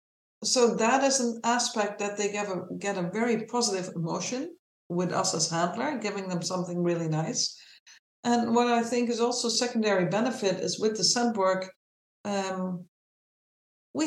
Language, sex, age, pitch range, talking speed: English, female, 60-79, 180-240 Hz, 160 wpm